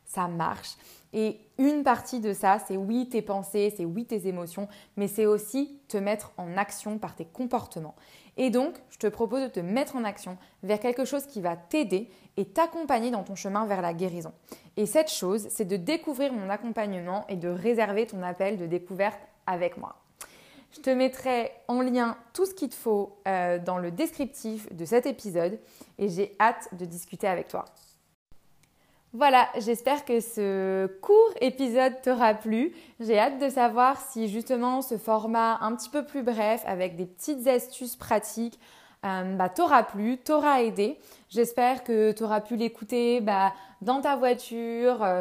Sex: female